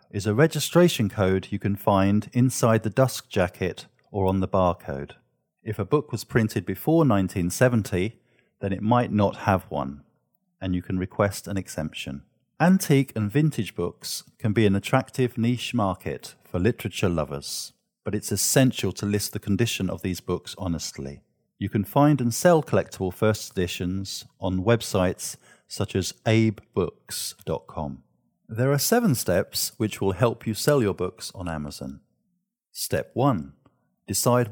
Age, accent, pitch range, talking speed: 50-69, British, 95-125 Hz, 150 wpm